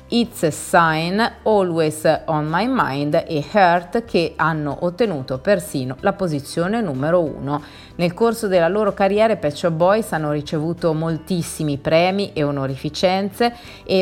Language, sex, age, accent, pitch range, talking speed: Italian, female, 30-49, native, 155-195 Hz, 135 wpm